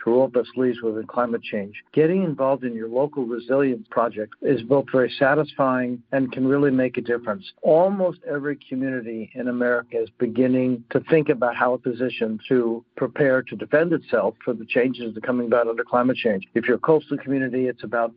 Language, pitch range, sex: English, 125-145 Hz, male